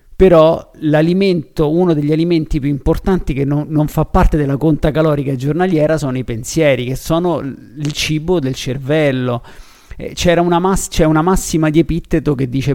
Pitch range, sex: 140-165 Hz, male